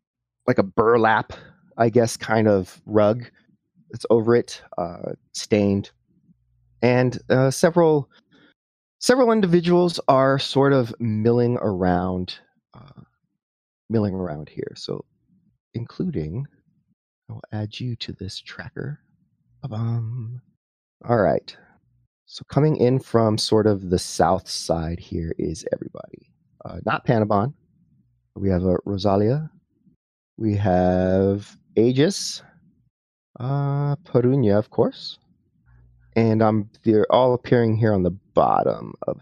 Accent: American